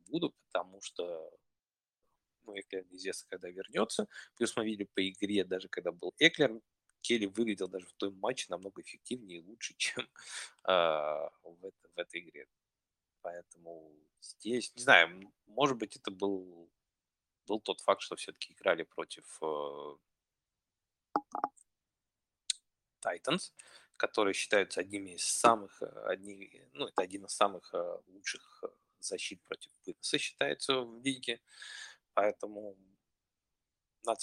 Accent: native